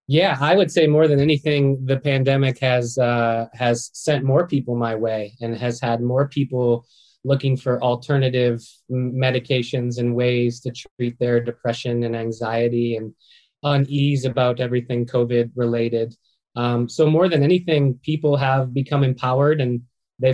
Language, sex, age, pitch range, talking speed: English, male, 20-39, 125-150 Hz, 155 wpm